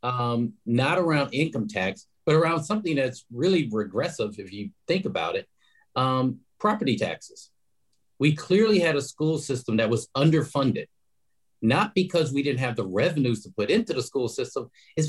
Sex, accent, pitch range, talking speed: male, American, 115-165 Hz, 165 wpm